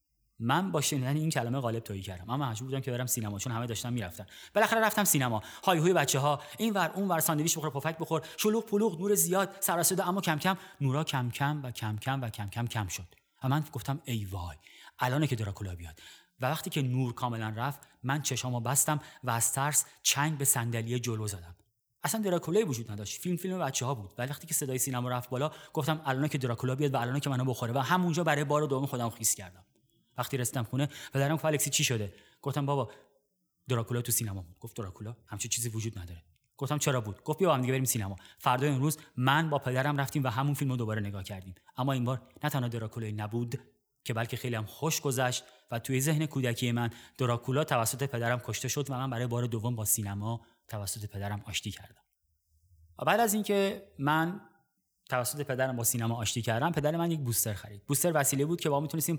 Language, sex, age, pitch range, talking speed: Persian, male, 30-49, 115-150 Hz, 210 wpm